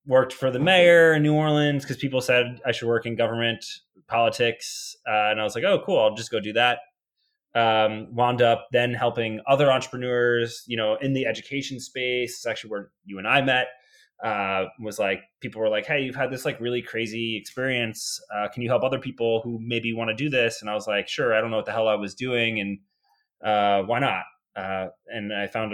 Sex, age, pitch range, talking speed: male, 20-39, 105-130 Hz, 220 wpm